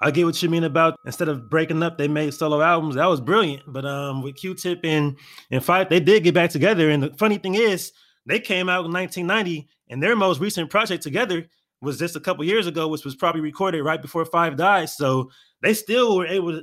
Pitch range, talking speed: 145-185 Hz, 230 wpm